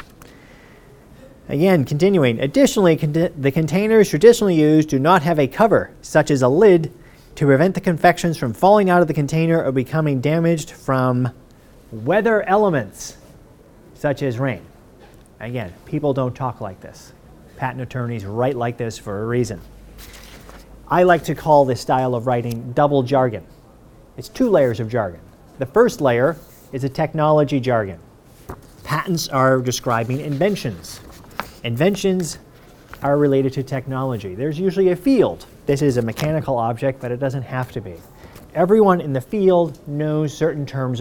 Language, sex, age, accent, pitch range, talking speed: English, male, 40-59, American, 120-160 Hz, 150 wpm